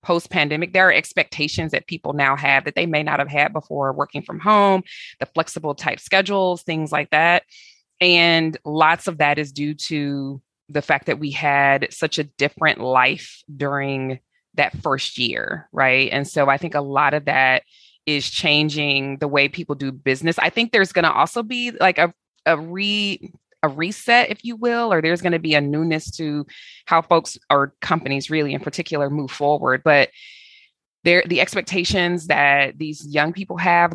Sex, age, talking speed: female, 20-39, 180 wpm